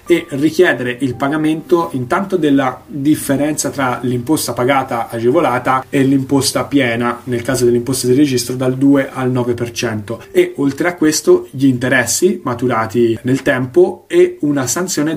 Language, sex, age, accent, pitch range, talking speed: Italian, male, 20-39, native, 120-145 Hz, 145 wpm